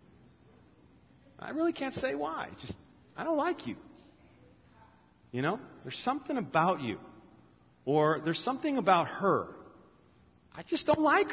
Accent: American